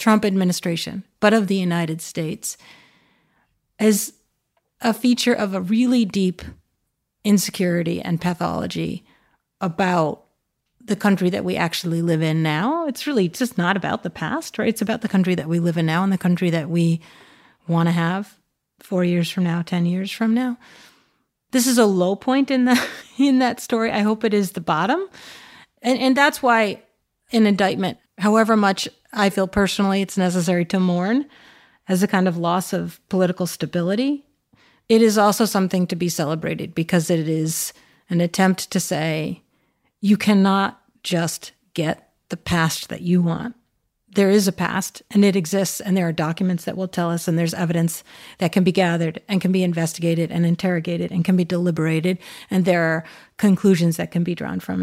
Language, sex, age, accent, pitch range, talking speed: English, female, 30-49, American, 170-210 Hz, 175 wpm